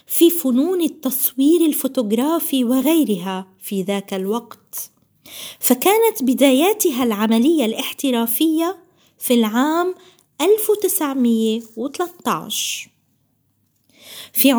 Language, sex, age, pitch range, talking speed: Arabic, female, 20-39, 230-330 Hz, 65 wpm